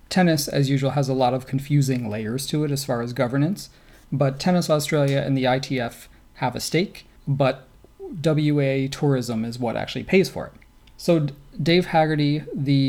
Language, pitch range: English, 130-150 Hz